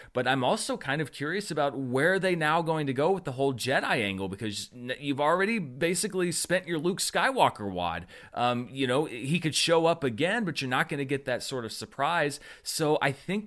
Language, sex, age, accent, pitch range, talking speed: English, male, 30-49, American, 115-150 Hz, 220 wpm